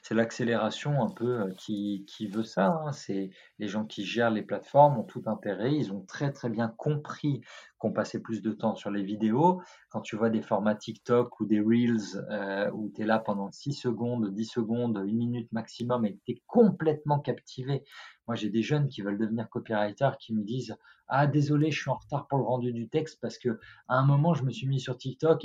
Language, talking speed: French, 220 wpm